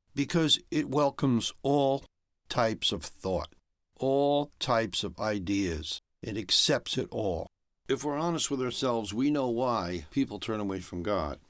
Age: 60-79